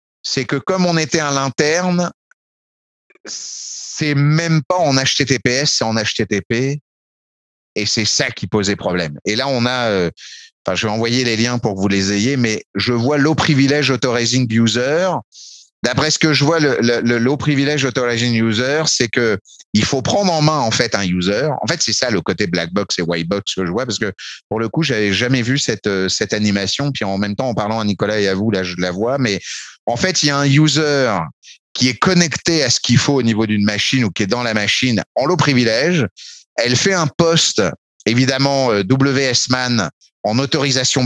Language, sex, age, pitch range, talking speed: French, male, 30-49, 105-140 Hz, 210 wpm